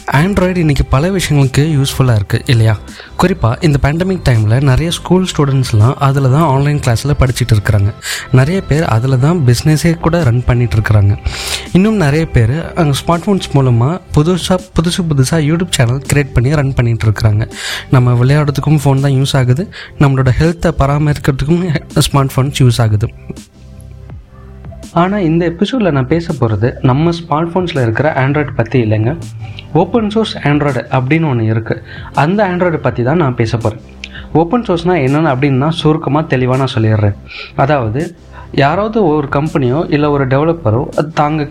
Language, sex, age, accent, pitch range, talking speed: Tamil, male, 30-49, native, 125-165 Hz, 145 wpm